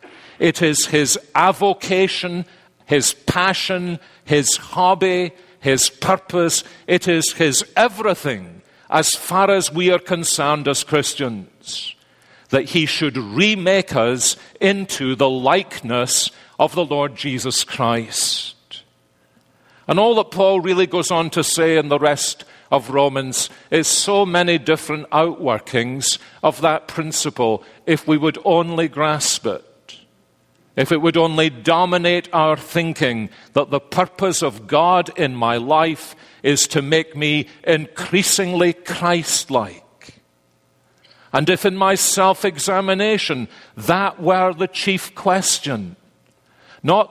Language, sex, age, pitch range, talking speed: English, male, 50-69, 140-185 Hz, 120 wpm